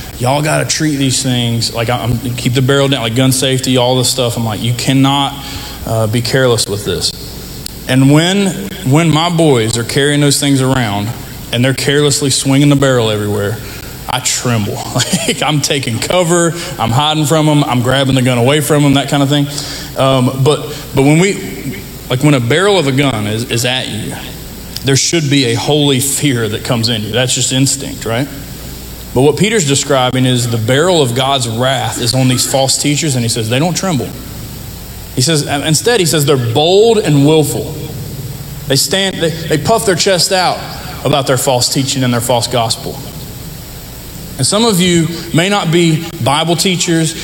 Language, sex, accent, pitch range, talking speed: English, male, American, 125-155 Hz, 190 wpm